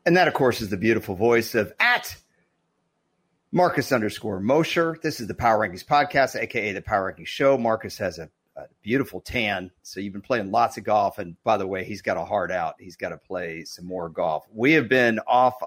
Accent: American